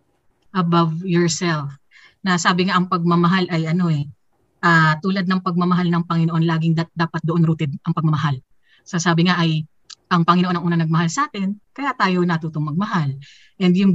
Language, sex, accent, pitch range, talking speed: Filipino, female, native, 160-190 Hz, 170 wpm